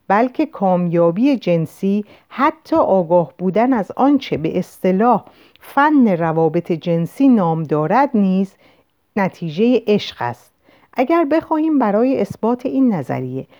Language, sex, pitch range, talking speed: Persian, female, 170-245 Hz, 110 wpm